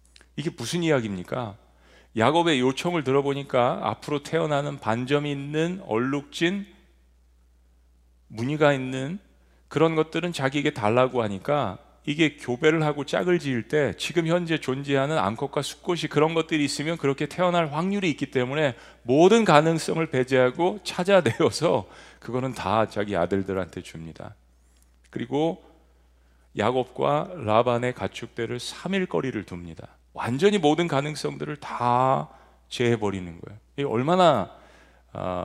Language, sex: Korean, male